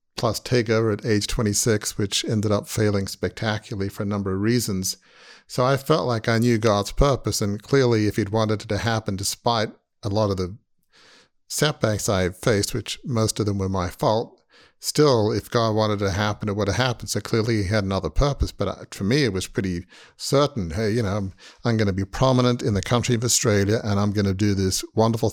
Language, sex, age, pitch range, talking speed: English, male, 50-69, 100-120 Hz, 215 wpm